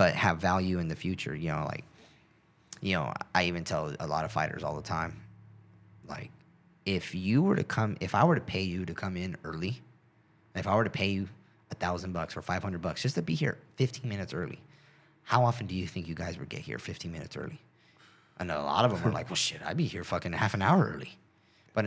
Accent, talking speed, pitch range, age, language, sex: American, 240 wpm, 90-125 Hz, 30-49, English, male